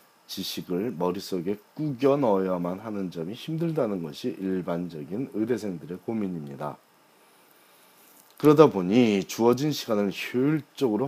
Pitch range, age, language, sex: 95-135 Hz, 40-59, Korean, male